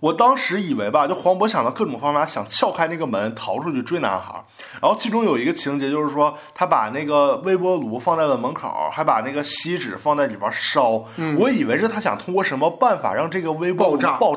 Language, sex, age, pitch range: Chinese, male, 20-39, 170-275 Hz